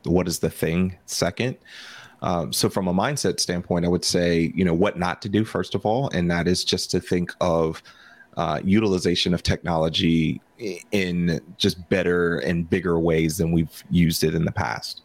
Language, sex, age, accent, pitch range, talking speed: English, male, 30-49, American, 85-90 Hz, 185 wpm